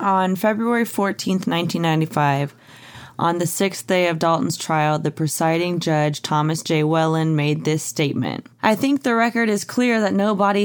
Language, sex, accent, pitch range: English, female, American, 150-190 Hz